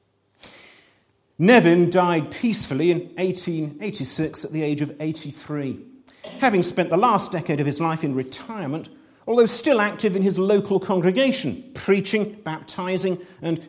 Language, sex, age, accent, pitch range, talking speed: English, male, 40-59, British, 150-205 Hz, 130 wpm